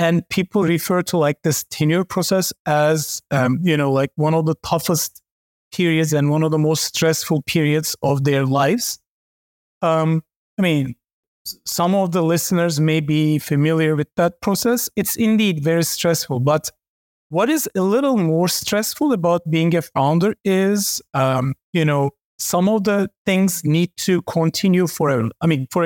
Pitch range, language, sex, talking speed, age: 155-190 Hz, English, male, 160 wpm, 30-49